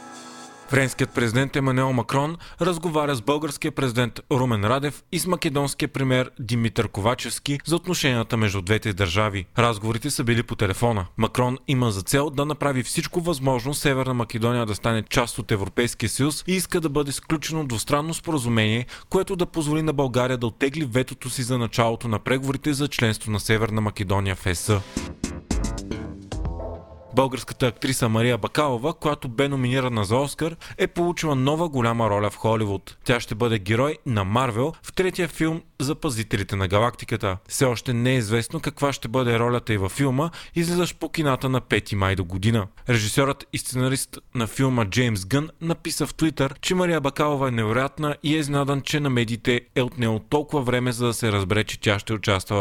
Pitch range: 110-145 Hz